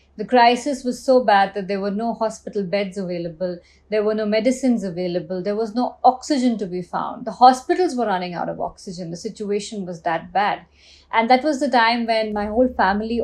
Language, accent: English, Indian